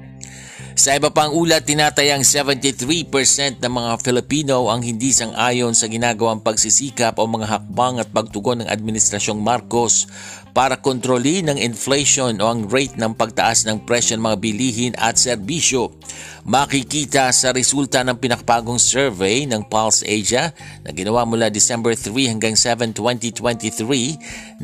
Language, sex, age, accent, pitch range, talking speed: Filipino, male, 50-69, native, 110-130 Hz, 135 wpm